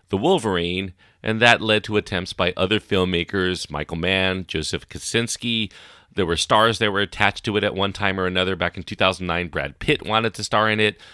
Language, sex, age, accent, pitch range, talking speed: English, male, 40-59, American, 90-120 Hz, 200 wpm